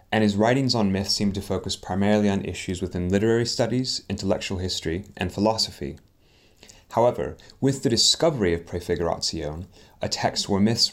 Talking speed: 155 wpm